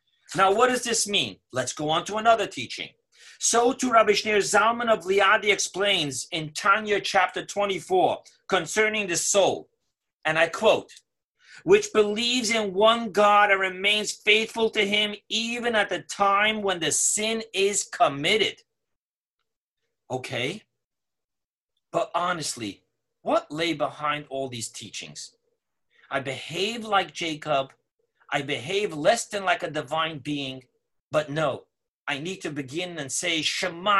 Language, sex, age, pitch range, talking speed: English, male, 40-59, 150-210 Hz, 140 wpm